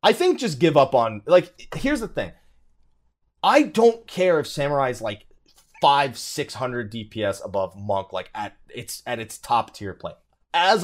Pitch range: 120-200 Hz